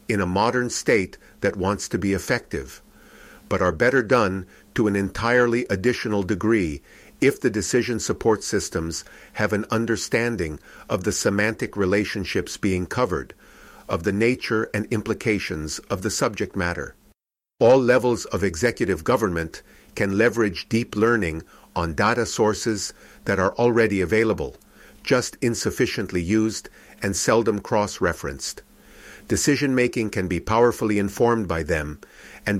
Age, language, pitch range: 50-69, English, 95-115 Hz